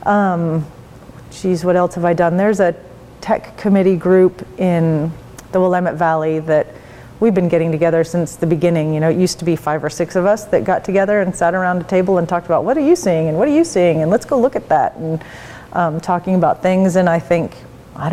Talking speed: 230 wpm